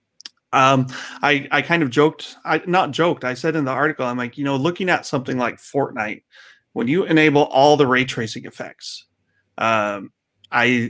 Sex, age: male, 30-49